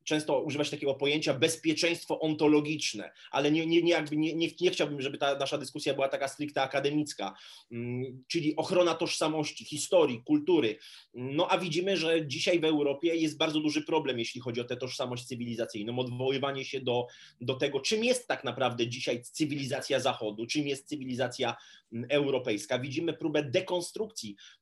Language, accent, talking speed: Polish, native, 150 wpm